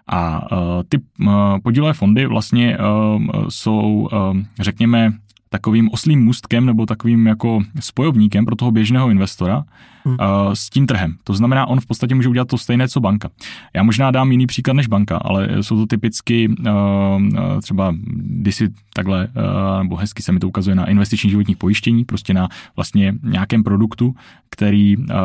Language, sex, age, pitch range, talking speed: Czech, male, 20-39, 100-115 Hz, 145 wpm